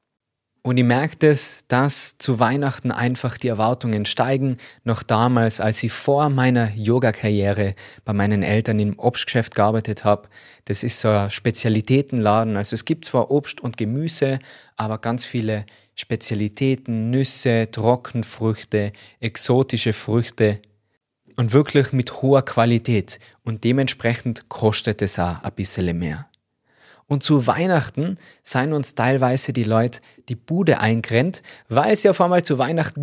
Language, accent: German, German